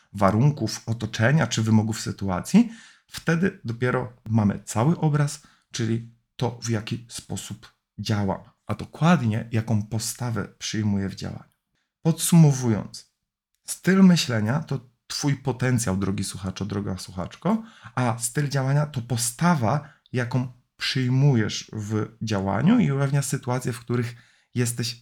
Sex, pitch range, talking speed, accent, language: male, 105-145 Hz, 115 wpm, native, Polish